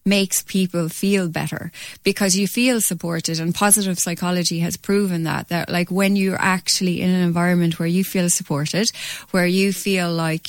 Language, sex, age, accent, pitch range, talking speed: English, female, 20-39, Irish, 180-225 Hz, 170 wpm